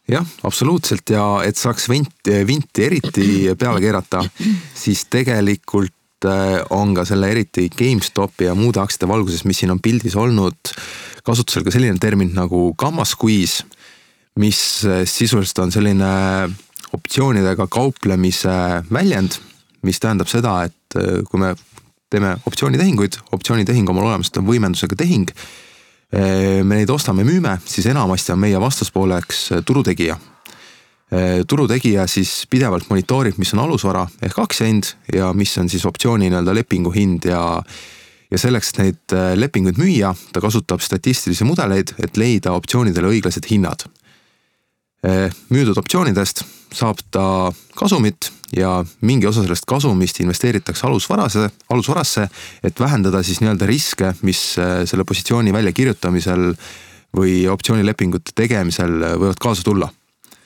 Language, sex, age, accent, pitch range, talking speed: English, male, 30-49, Finnish, 90-110 Hz, 120 wpm